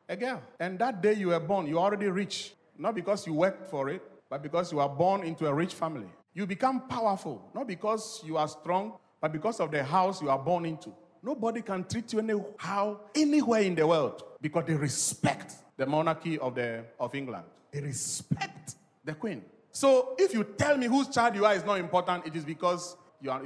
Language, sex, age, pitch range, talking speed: English, male, 40-59, 165-235 Hz, 210 wpm